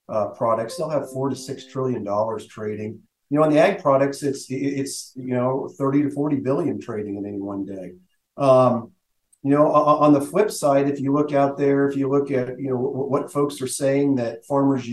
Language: English